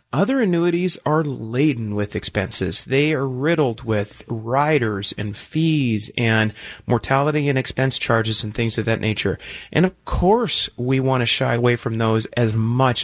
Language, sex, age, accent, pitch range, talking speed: English, male, 30-49, American, 115-155 Hz, 155 wpm